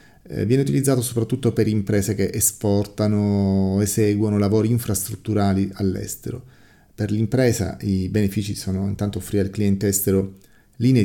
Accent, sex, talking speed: native, male, 130 wpm